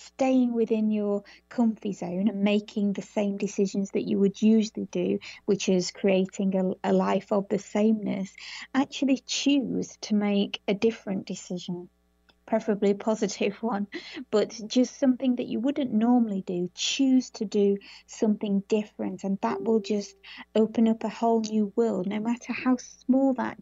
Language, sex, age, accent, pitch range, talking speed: English, female, 30-49, British, 195-230 Hz, 160 wpm